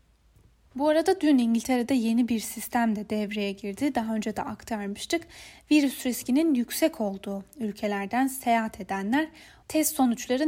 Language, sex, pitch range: Turkish, female, 215-275 Hz